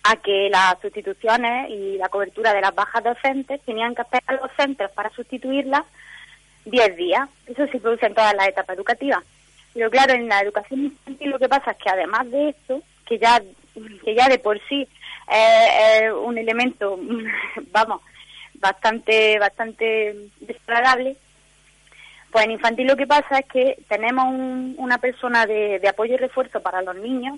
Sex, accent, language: female, Spanish, Spanish